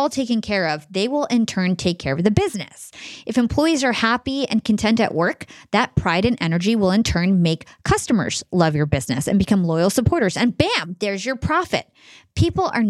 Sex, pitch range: female, 160-215 Hz